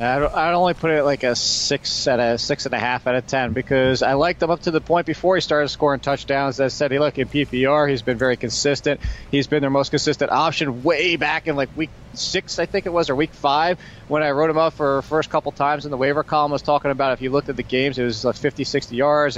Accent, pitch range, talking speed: American, 135-160 Hz, 275 wpm